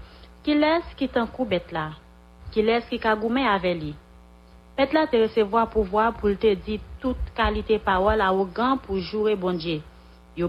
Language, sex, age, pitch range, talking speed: English, female, 40-59, 175-245 Hz, 175 wpm